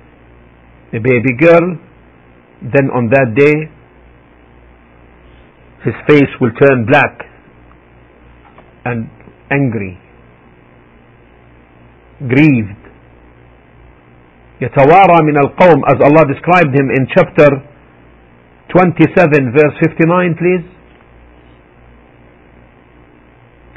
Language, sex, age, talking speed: English, male, 50-69, 70 wpm